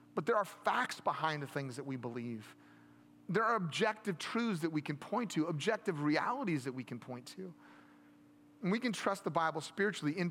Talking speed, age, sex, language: 200 wpm, 30-49, male, English